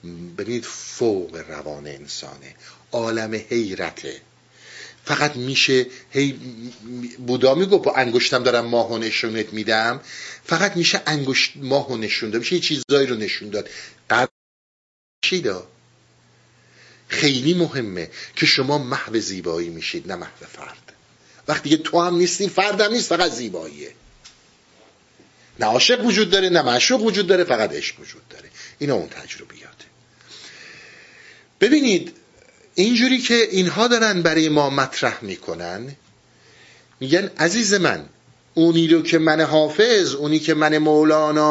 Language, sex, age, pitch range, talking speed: Persian, male, 50-69, 125-185 Hz, 115 wpm